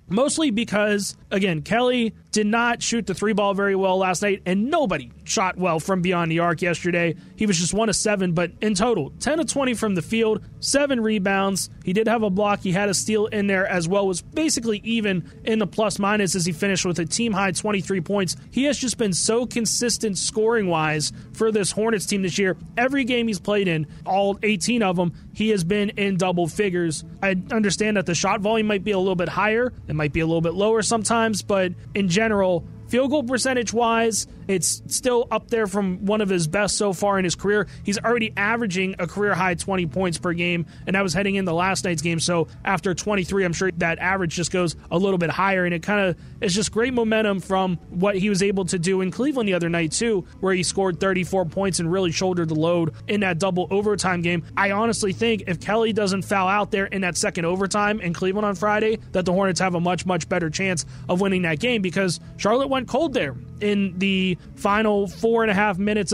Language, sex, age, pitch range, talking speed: English, male, 30-49, 180-215 Hz, 225 wpm